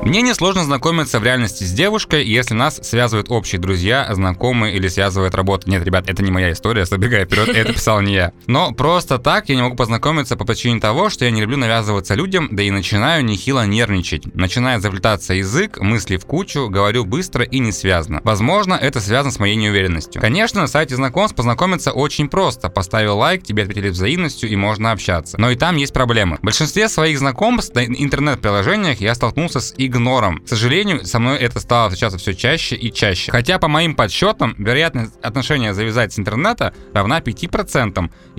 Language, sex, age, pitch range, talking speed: Russian, male, 20-39, 100-140 Hz, 185 wpm